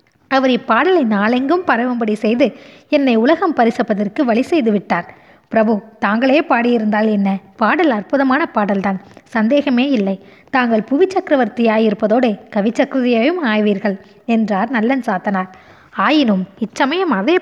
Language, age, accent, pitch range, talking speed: Tamil, 20-39, native, 210-275 Hz, 110 wpm